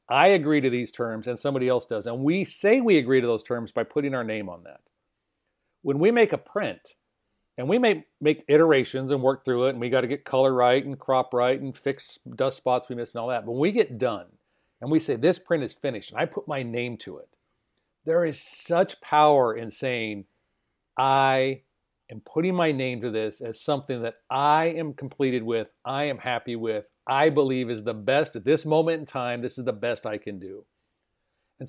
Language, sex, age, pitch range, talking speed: English, male, 40-59, 125-160 Hz, 220 wpm